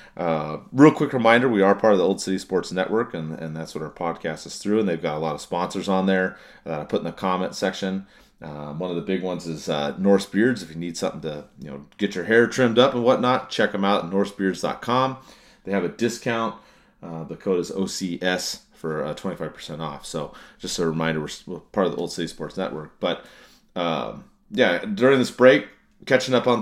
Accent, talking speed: American, 225 wpm